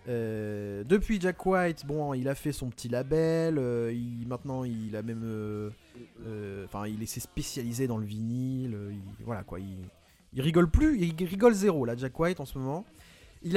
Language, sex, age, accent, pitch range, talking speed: French, male, 20-39, French, 115-165 Hz, 195 wpm